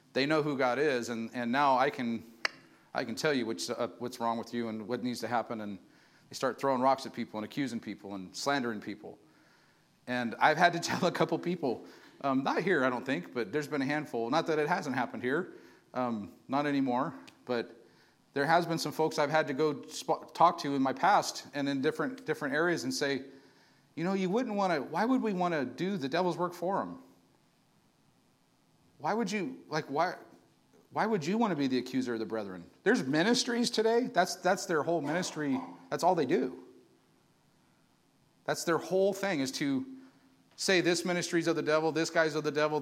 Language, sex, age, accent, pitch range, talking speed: English, male, 40-59, American, 130-185 Hz, 210 wpm